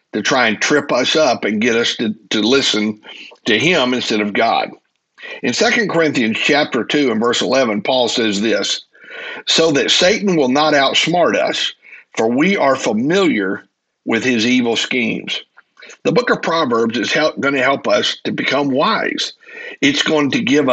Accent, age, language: American, 60-79, English